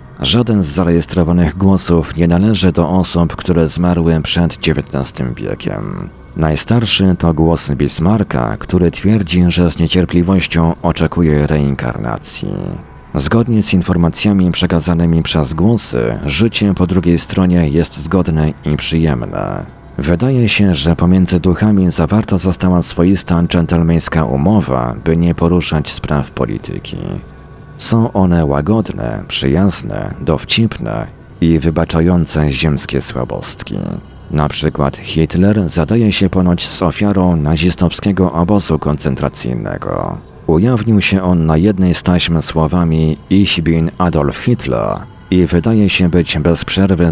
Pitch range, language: 80-95 Hz, Polish